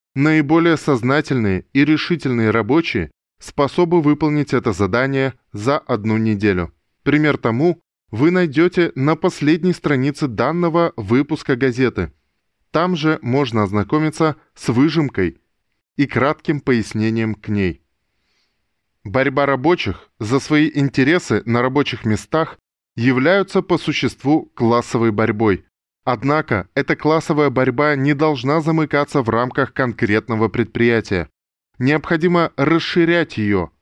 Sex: male